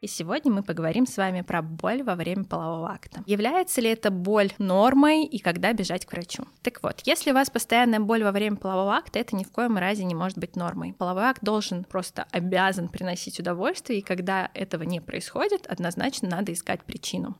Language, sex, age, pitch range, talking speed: Russian, female, 20-39, 185-235 Hz, 200 wpm